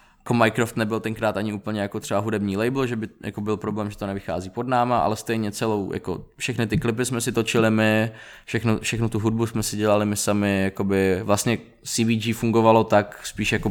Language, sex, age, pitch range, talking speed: Czech, male, 20-39, 95-115 Hz, 200 wpm